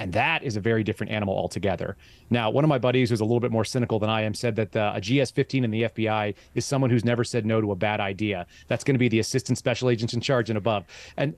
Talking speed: 275 wpm